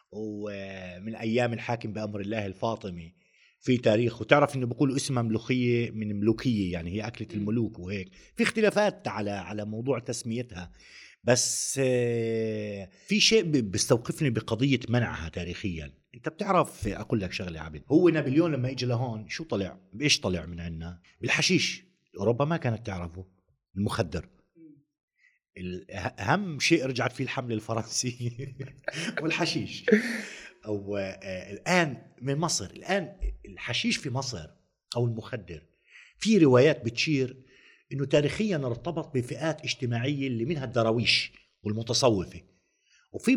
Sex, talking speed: male, 120 wpm